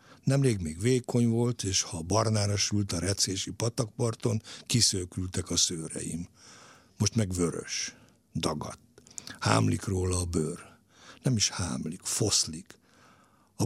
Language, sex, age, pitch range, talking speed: Hungarian, male, 60-79, 90-120 Hz, 120 wpm